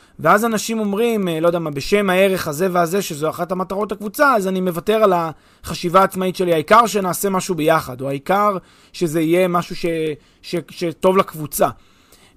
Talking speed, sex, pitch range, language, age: 165 wpm, male, 155-200 Hz, Hebrew, 30-49